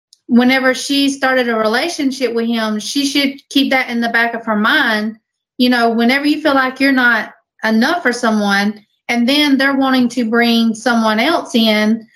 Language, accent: English, American